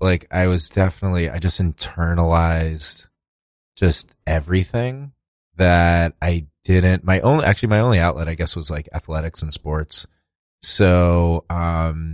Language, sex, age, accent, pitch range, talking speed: English, male, 30-49, American, 80-95 Hz, 135 wpm